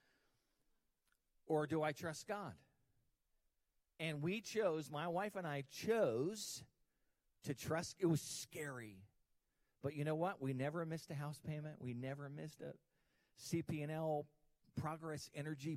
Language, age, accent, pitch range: English, 50-69, American, 145-195 Hz